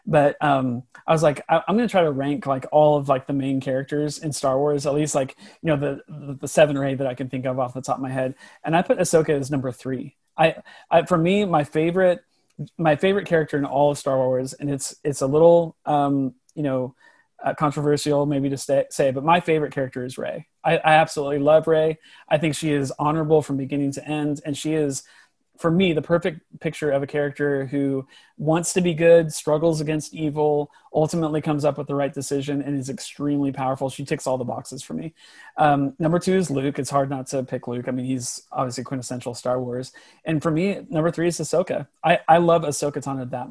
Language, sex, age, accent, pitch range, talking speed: English, male, 30-49, American, 135-160 Hz, 230 wpm